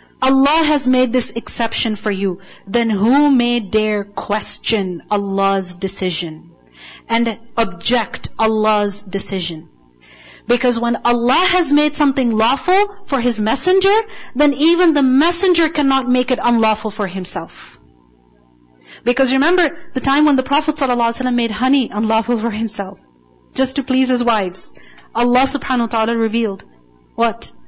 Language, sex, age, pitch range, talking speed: English, female, 40-59, 210-290 Hz, 135 wpm